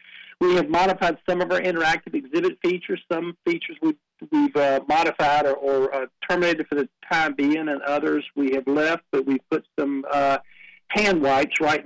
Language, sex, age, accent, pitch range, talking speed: English, male, 50-69, American, 130-165 Hz, 180 wpm